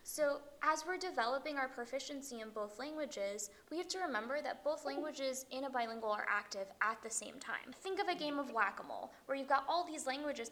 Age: 10-29